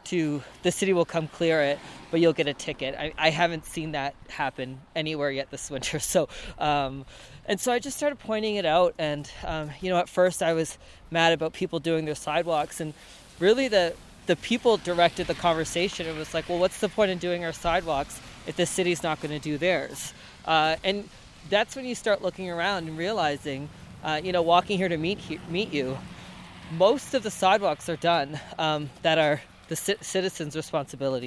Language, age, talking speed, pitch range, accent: English, 20-39, 200 wpm, 145-180 Hz, American